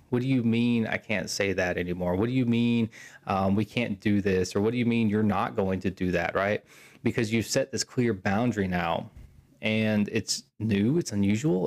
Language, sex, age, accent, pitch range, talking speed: English, male, 20-39, American, 100-125 Hz, 215 wpm